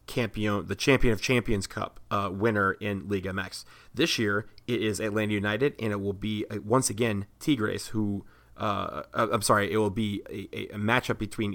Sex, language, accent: male, English, American